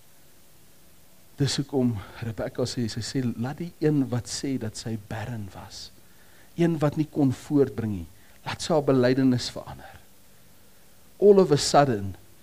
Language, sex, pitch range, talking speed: English, male, 115-155 Hz, 150 wpm